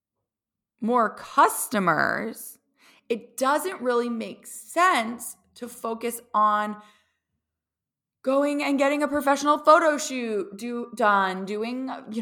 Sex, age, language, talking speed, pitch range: female, 20-39, English, 105 wpm, 195-260 Hz